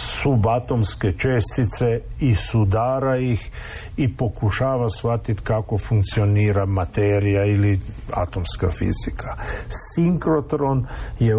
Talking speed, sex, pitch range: 85 wpm, male, 105-130 Hz